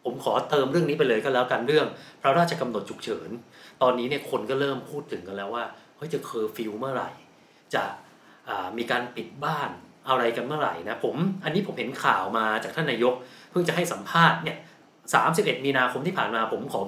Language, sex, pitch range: Thai, male, 125-175 Hz